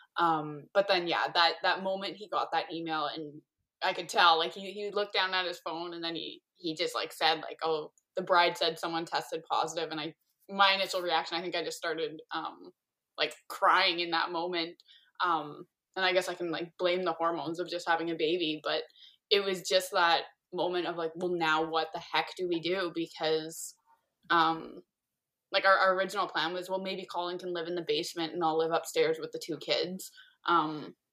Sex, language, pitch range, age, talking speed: female, English, 165-190 Hz, 10-29, 210 wpm